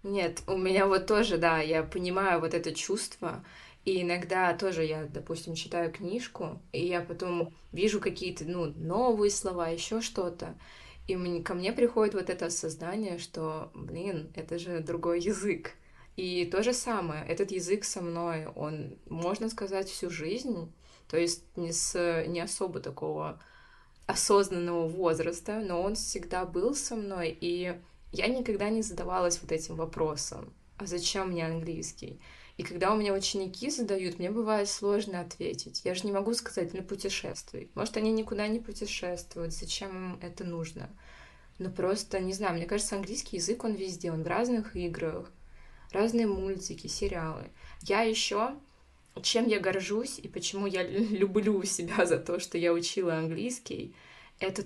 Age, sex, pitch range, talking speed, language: 20-39, female, 170-205 Hz, 155 wpm, Russian